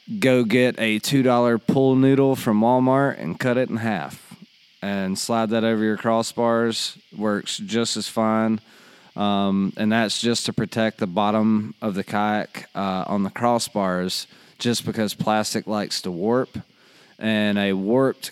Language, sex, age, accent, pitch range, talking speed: English, male, 20-39, American, 95-115 Hz, 155 wpm